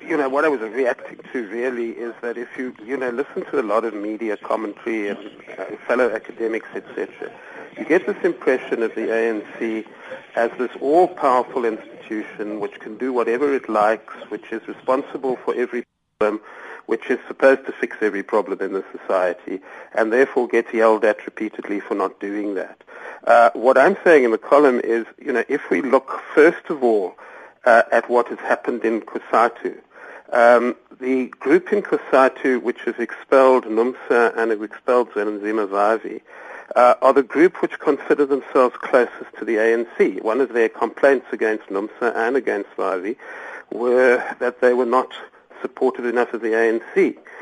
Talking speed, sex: 170 wpm, male